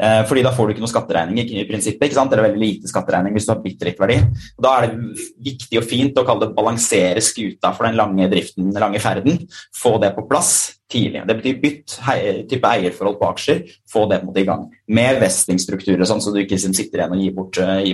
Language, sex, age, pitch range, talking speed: English, male, 20-39, 100-120 Hz, 210 wpm